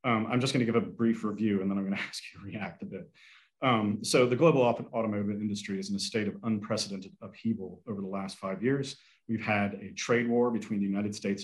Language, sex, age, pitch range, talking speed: English, male, 40-59, 105-125 Hz, 235 wpm